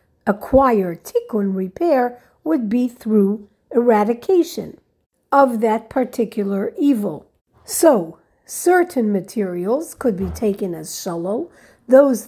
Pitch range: 205-280 Hz